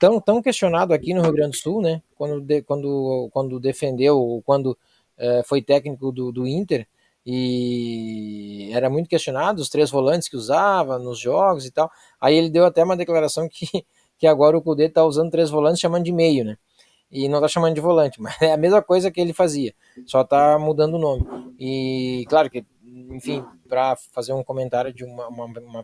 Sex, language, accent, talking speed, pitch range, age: male, Portuguese, Brazilian, 195 wpm, 135-175 Hz, 20-39